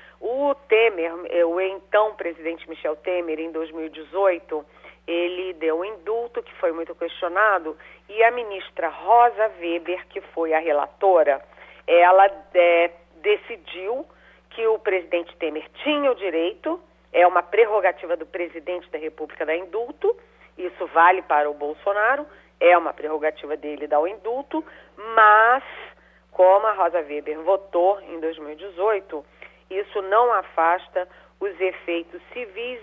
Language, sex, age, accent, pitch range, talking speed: Portuguese, female, 40-59, Brazilian, 160-225 Hz, 130 wpm